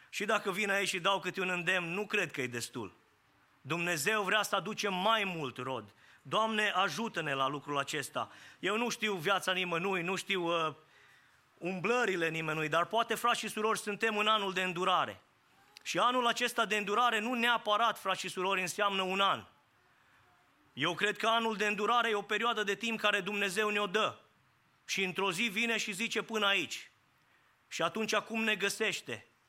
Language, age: English, 20-39